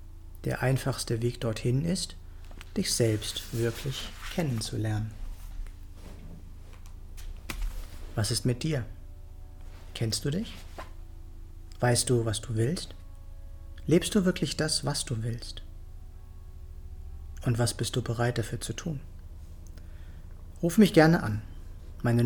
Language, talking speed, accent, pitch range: German, 110 wpm, German, 85-135 Hz